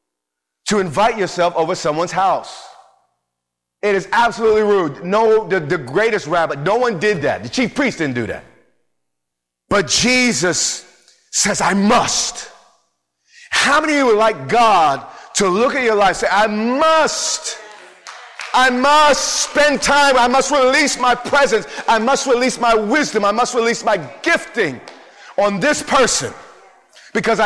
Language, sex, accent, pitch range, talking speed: English, male, American, 185-255 Hz, 150 wpm